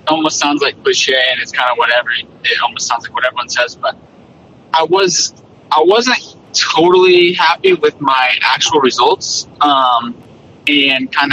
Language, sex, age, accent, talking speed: English, male, 30-49, American, 160 wpm